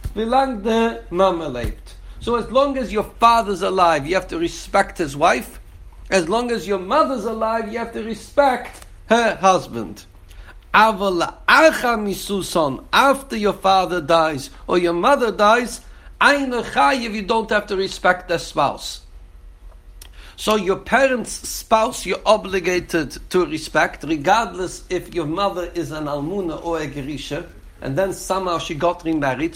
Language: English